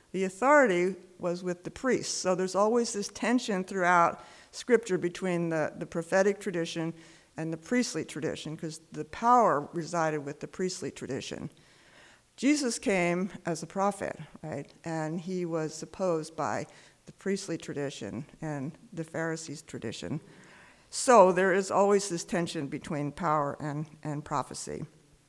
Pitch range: 160-210 Hz